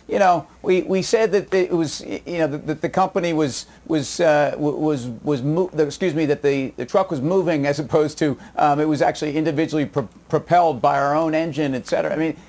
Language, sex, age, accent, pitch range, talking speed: English, male, 40-59, American, 140-175 Hz, 220 wpm